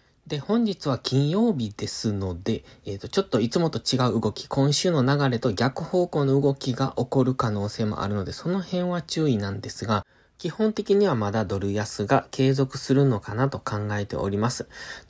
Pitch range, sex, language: 110-145 Hz, male, Japanese